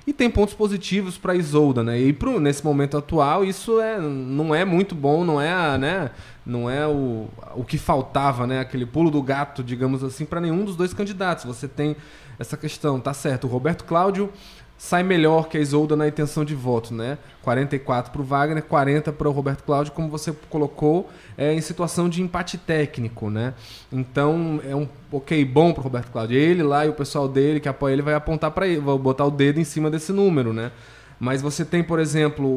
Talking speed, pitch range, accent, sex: 205 wpm, 130-165 Hz, Brazilian, male